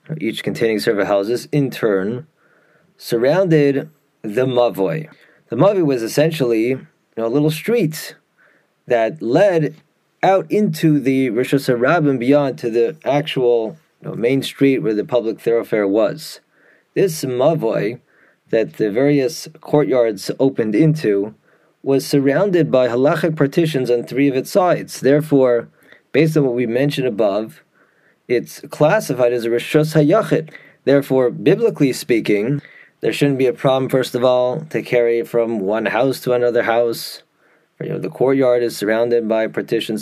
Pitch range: 120-155 Hz